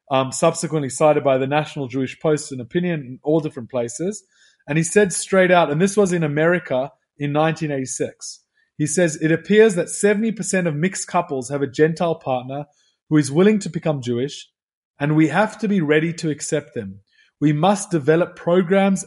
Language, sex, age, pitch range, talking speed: English, male, 30-49, 140-175 Hz, 185 wpm